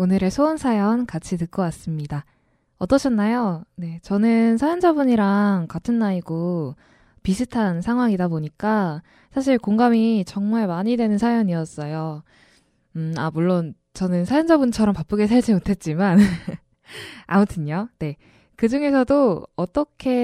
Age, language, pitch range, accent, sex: 10-29, Korean, 175-240 Hz, native, female